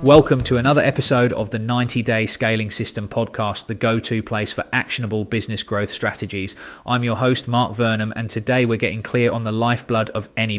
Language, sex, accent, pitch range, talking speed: English, male, British, 110-125 Hz, 185 wpm